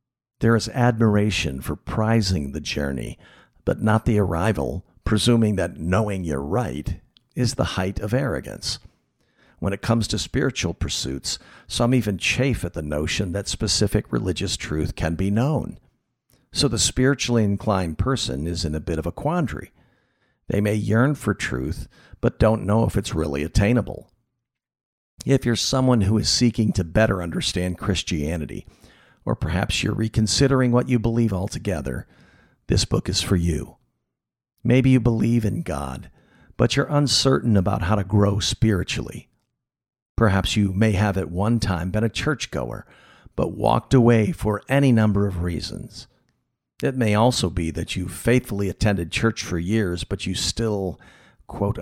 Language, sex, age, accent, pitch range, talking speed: English, male, 60-79, American, 90-120 Hz, 155 wpm